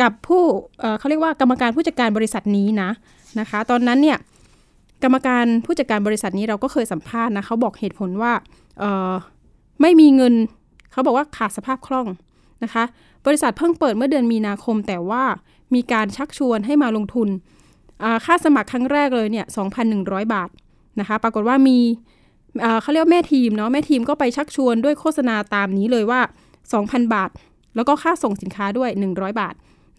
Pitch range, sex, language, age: 210-270 Hz, female, Thai, 20-39